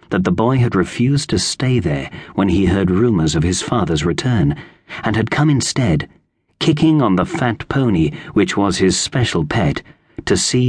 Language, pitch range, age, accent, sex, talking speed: English, 95-140 Hz, 40-59, British, male, 180 wpm